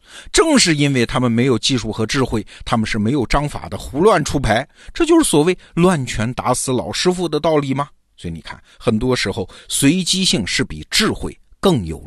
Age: 50-69